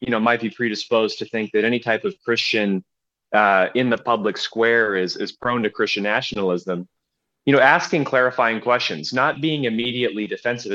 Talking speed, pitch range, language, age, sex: 180 wpm, 105-130 Hz, English, 30-49, male